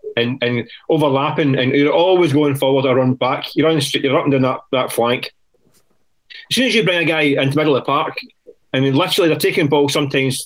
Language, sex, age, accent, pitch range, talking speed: English, male, 30-49, British, 140-215 Hz, 245 wpm